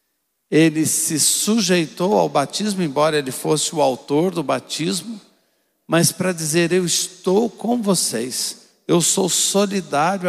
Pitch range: 130-175 Hz